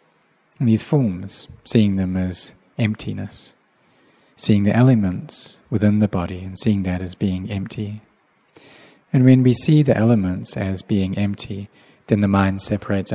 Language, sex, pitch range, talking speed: English, male, 100-120 Hz, 140 wpm